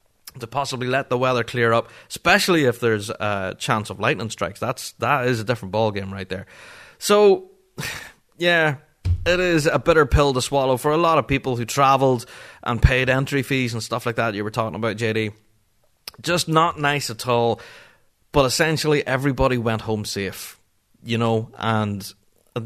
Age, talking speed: 30-49, 185 wpm